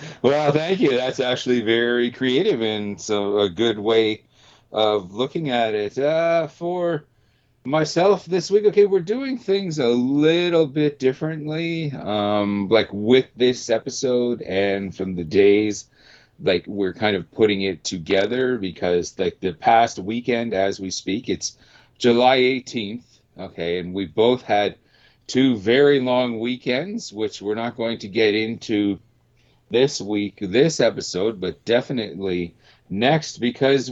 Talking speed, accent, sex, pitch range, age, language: 140 wpm, American, male, 110-150 Hz, 40-59, English